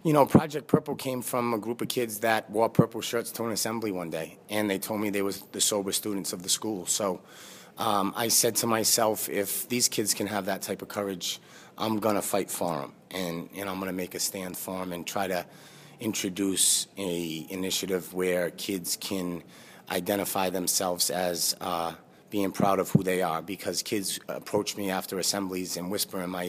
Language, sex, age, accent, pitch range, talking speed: English, male, 30-49, American, 90-105 Hz, 205 wpm